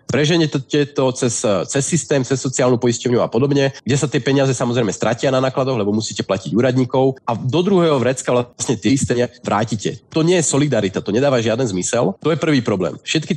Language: Slovak